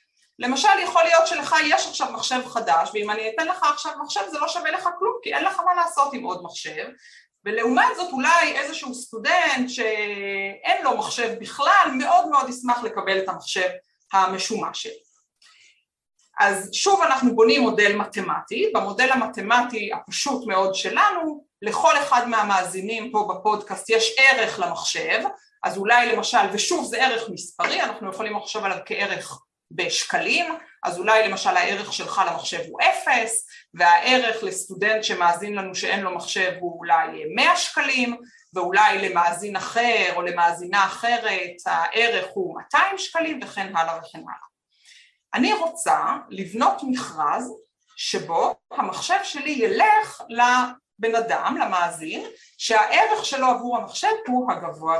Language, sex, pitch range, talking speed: Hebrew, female, 205-330 Hz, 135 wpm